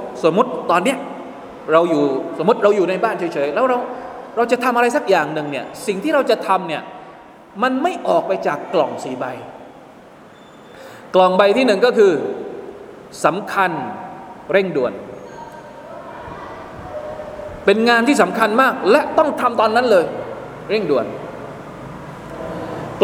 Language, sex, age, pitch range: Thai, male, 20-39, 180-275 Hz